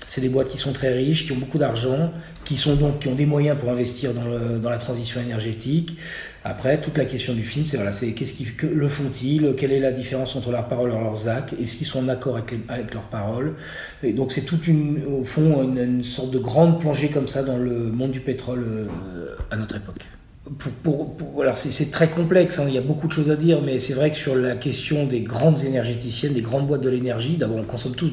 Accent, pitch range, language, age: French, 120-150 Hz, French, 40-59